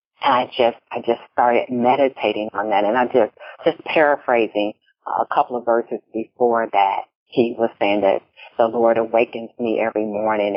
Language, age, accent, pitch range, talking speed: English, 50-69, American, 115-165 Hz, 165 wpm